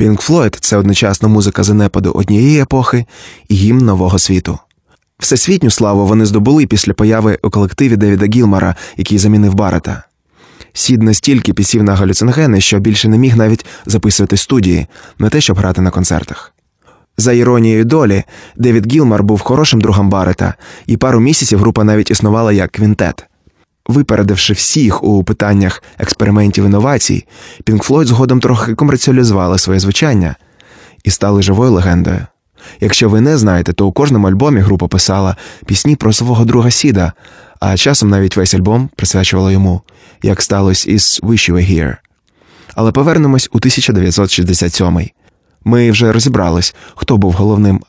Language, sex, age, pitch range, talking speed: Ukrainian, male, 20-39, 95-120 Hz, 145 wpm